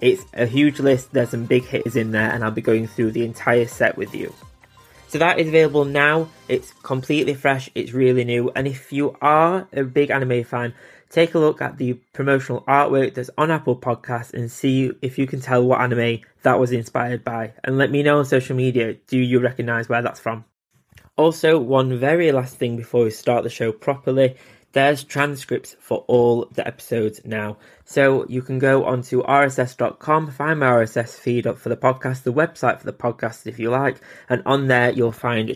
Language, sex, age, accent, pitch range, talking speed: English, male, 20-39, British, 120-140 Hz, 200 wpm